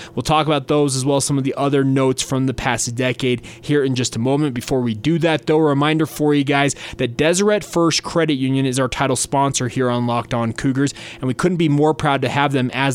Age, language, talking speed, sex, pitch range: 20-39, English, 250 wpm, male, 130-165 Hz